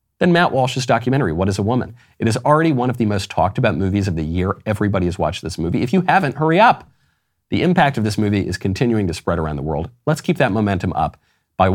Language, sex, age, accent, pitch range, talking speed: English, male, 40-59, American, 95-140 Hz, 250 wpm